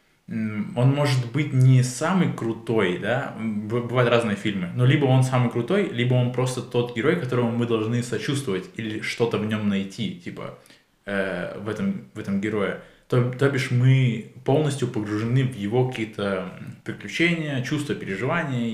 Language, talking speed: Russian, 150 wpm